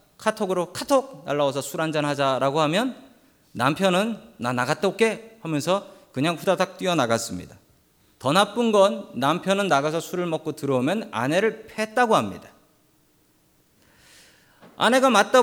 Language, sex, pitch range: Korean, male, 145-220 Hz